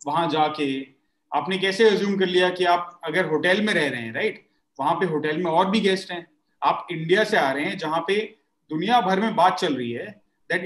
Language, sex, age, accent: English, male, 30-49, Indian